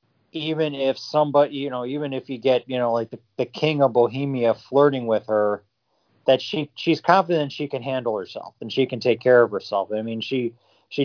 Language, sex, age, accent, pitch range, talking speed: English, male, 40-59, American, 110-135 Hz, 210 wpm